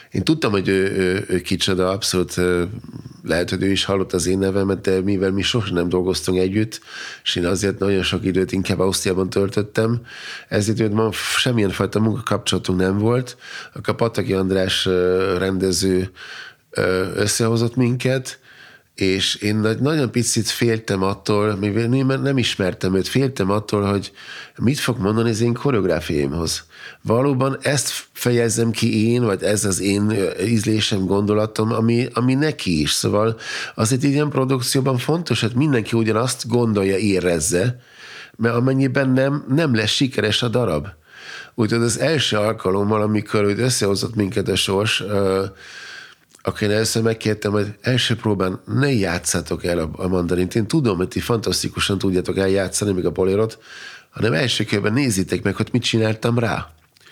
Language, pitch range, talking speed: Hungarian, 95-120 Hz, 145 wpm